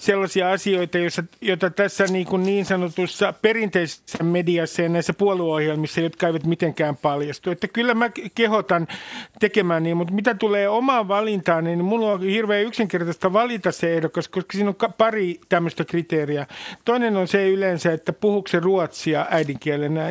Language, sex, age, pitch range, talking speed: Finnish, male, 50-69, 160-200 Hz, 150 wpm